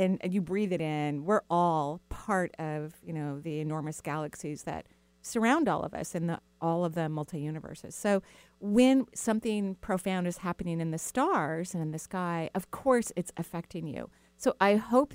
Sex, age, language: female, 40-59, English